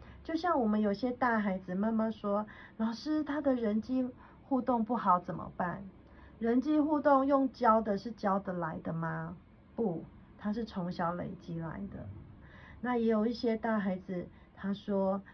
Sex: female